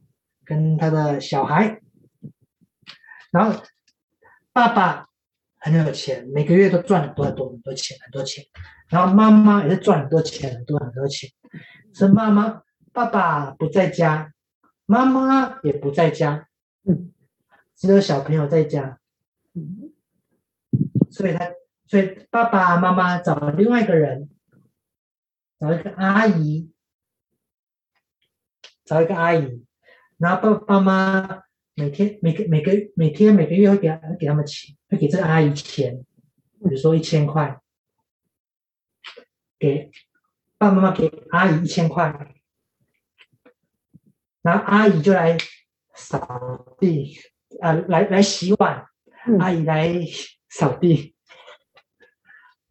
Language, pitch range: Chinese, 150-195 Hz